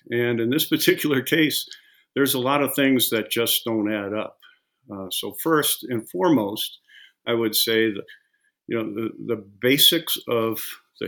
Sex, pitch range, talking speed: male, 110-135 Hz, 170 wpm